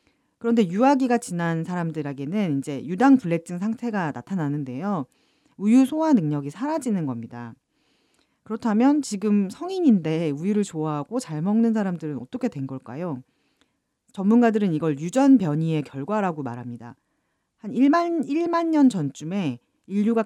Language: Korean